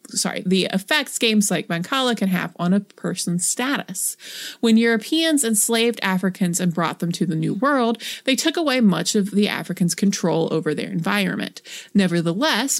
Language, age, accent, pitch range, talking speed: English, 30-49, American, 185-235 Hz, 165 wpm